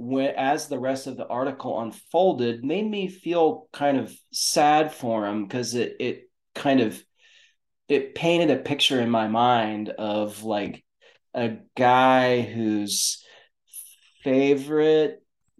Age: 30-49